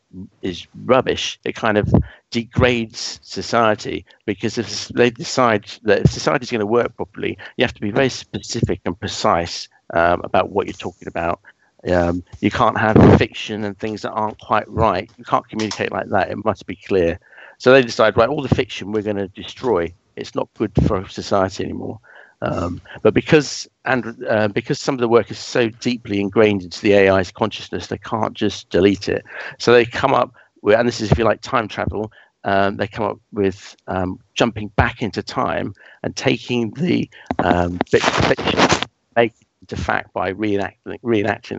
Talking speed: 185 wpm